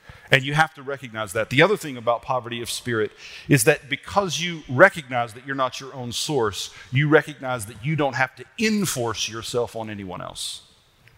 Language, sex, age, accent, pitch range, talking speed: English, male, 40-59, American, 115-150 Hz, 195 wpm